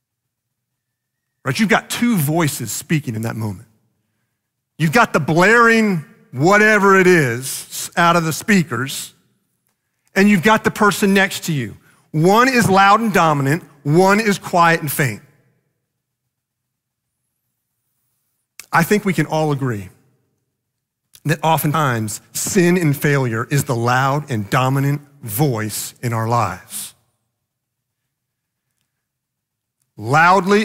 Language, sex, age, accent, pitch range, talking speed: English, male, 40-59, American, 125-170 Hz, 115 wpm